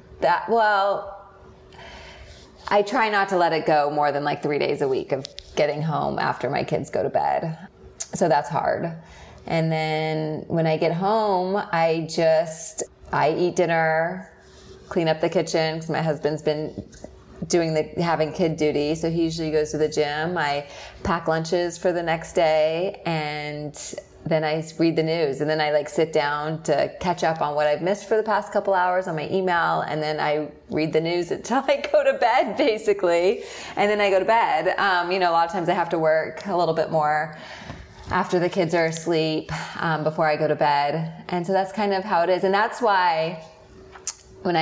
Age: 20-39